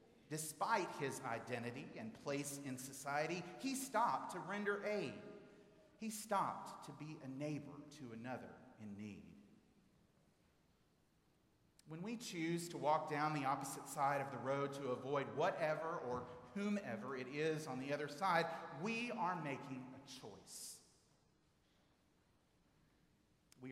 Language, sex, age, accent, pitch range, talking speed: English, male, 40-59, American, 130-185 Hz, 130 wpm